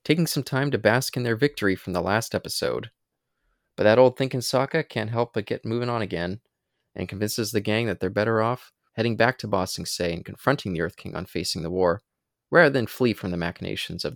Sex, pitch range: male, 100-120 Hz